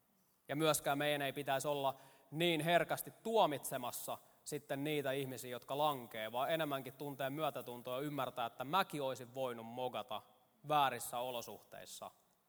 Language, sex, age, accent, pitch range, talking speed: Finnish, male, 20-39, native, 130-170 Hz, 130 wpm